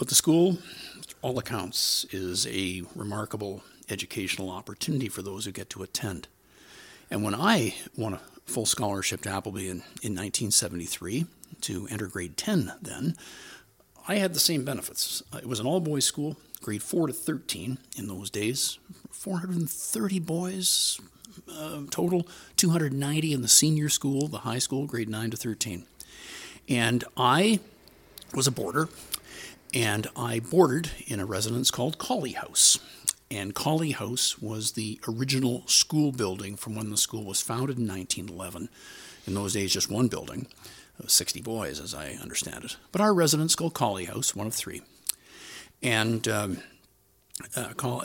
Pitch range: 100-150 Hz